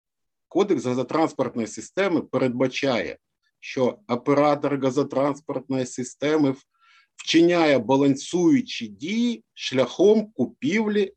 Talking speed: 70 wpm